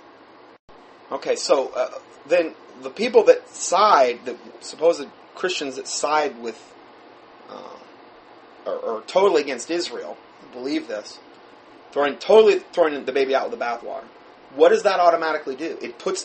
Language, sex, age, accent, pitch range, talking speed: English, male, 30-49, American, 185-260 Hz, 135 wpm